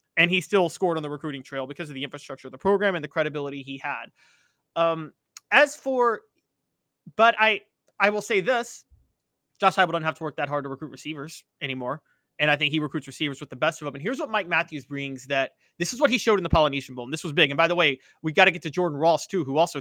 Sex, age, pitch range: male, 30-49, 145-195 Hz